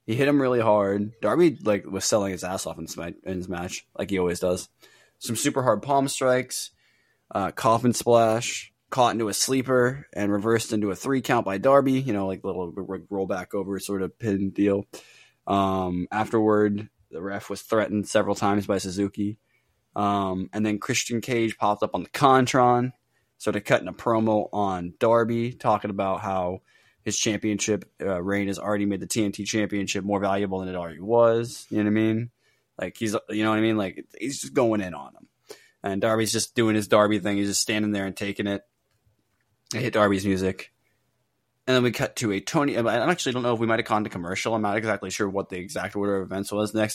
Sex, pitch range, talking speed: male, 95-115 Hz, 210 wpm